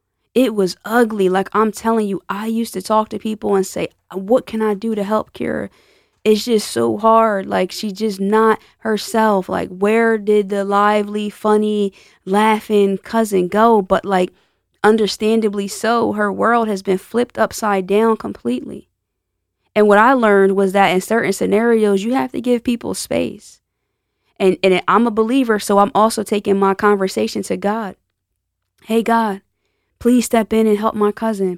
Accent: American